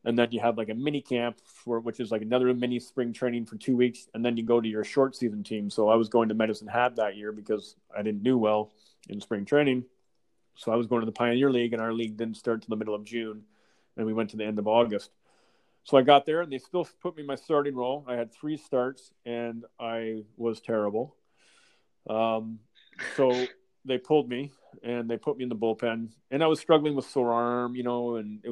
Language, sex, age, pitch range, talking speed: English, male, 30-49, 110-130 Hz, 240 wpm